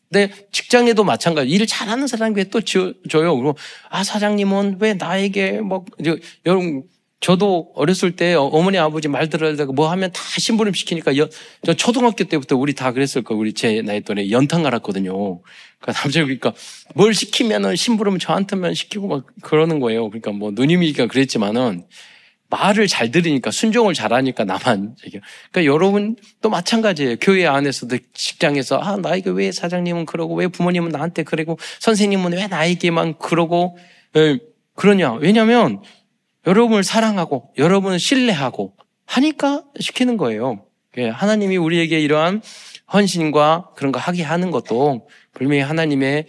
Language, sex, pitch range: Korean, male, 145-200 Hz